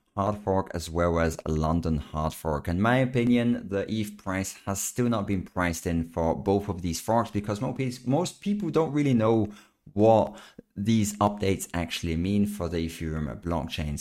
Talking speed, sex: 180 wpm, male